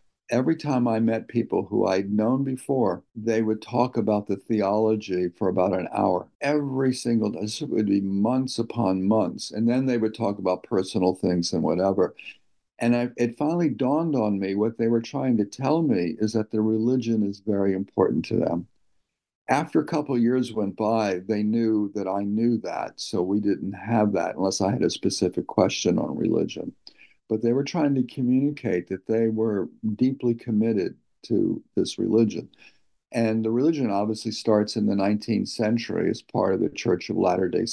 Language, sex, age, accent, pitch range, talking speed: English, male, 60-79, American, 100-115 Hz, 185 wpm